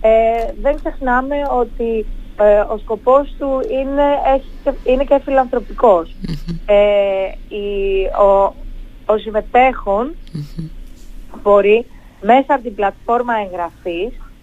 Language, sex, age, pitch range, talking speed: Greek, female, 30-49, 200-245 Hz, 100 wpm